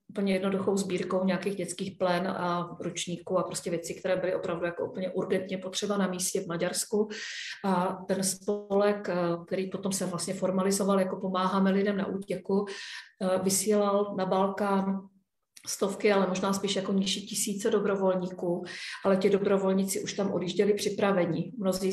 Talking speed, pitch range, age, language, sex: 150 wpm, 185-195 Hz, 40-59, Czech, female